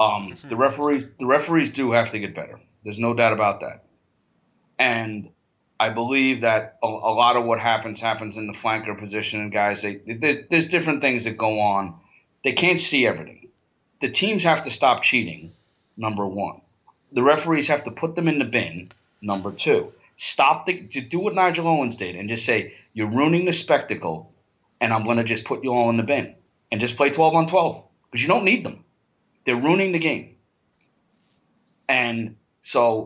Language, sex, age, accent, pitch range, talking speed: English, male, 30-49, American, 110-145 Hz, 190 wpm